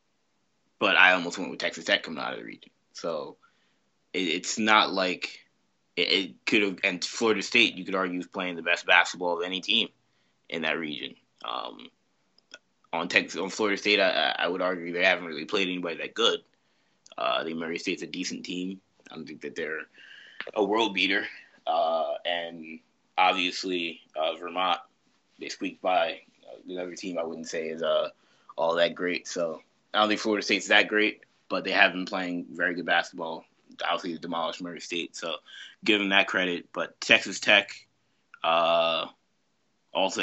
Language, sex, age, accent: English, male, 20-39, American